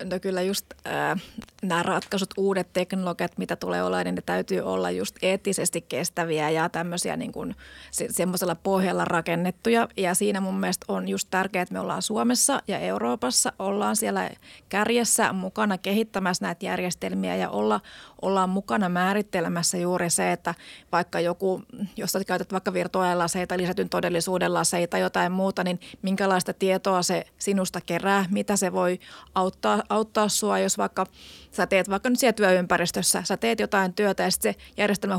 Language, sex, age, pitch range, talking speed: Finnish, female, 30-49, 180-205 Hz, 160 wpm